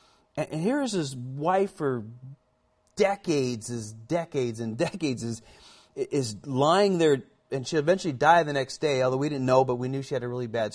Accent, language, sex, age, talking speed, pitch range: American, Finnish, male, 30-49, 185 wpm, 130-195 Hz